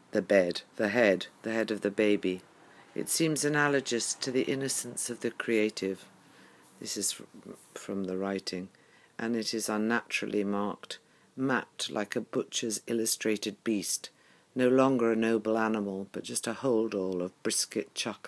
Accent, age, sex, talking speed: British, 50-69, female, 150 wpm